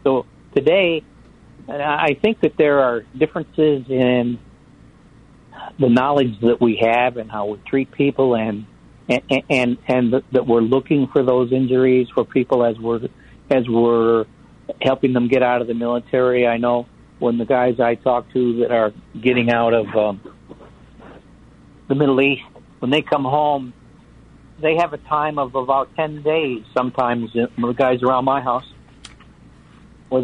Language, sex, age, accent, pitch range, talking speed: English, male, 60-79, American, 120-140 Hz, 155 wpm